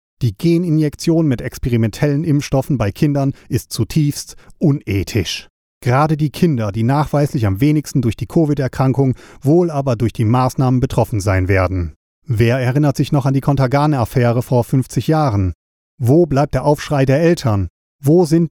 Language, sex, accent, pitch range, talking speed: German, male, German, 115-150 Hz, 150 wpm